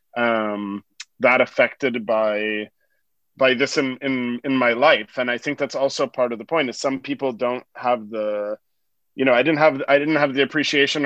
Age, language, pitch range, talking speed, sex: 30-49, English, 120-140 Hz, 195 wpm, male